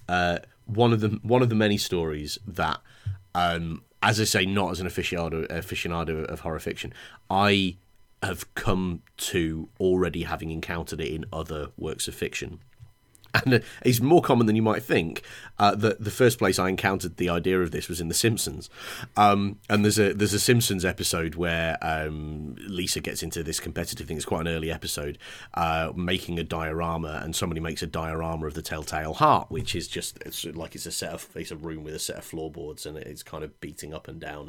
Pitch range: 80-110 Hz